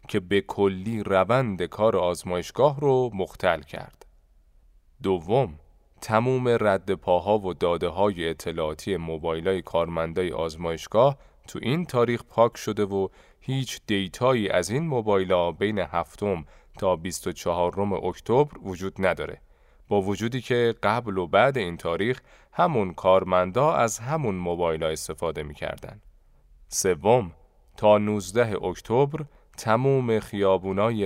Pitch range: 90-125 Hz